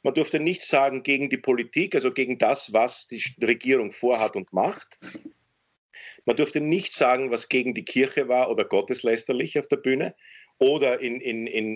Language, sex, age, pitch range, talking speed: German, male, 50-69, 120-165 Hz, 170 wpm